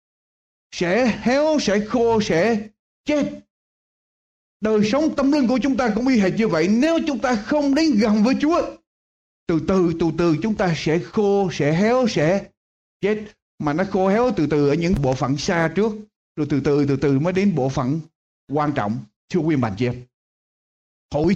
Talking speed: 190 wpm